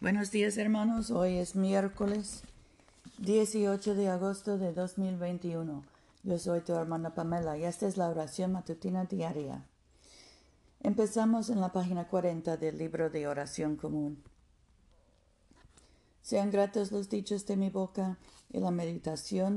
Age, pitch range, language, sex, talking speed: 50-69, 155-195 Hz, Spanish, female, 130 wpm